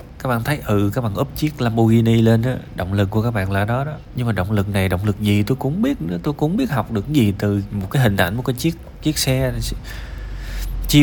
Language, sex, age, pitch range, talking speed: Vietnamese, male, 20-39, 85-115 Hz, 260 wpm